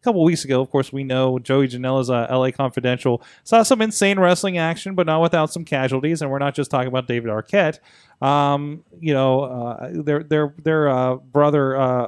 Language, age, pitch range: English, 30-49, 120-140 Hz